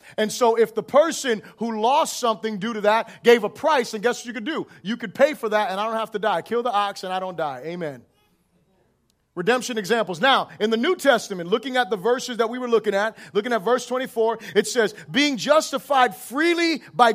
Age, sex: 30-49, male